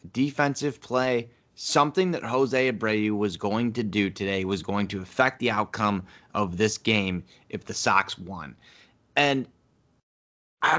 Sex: male